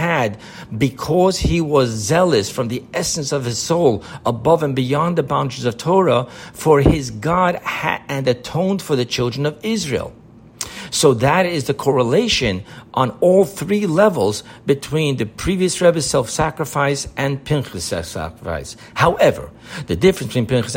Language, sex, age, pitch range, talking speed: English, male, 60-79, 120-160 Hz, 145 wpm